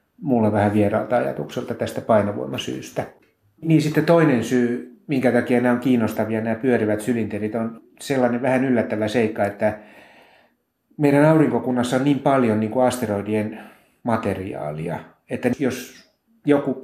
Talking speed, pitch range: 130 wpm, 105-130 Hz